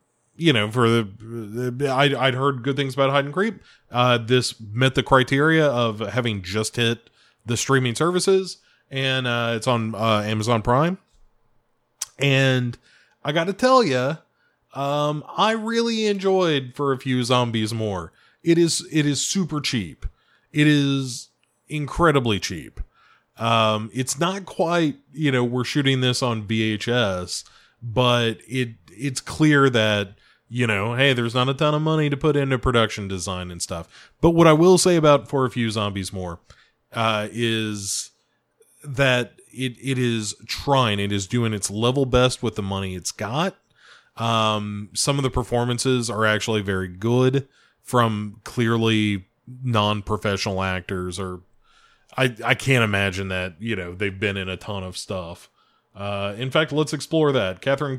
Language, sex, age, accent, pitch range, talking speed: English, male, 20-39, American, 110-140 Hz, 160 wpm